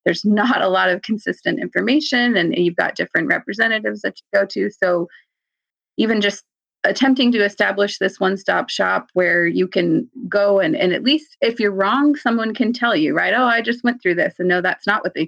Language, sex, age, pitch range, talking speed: English, female, 30-49, 195-240 Hz, 210 wpm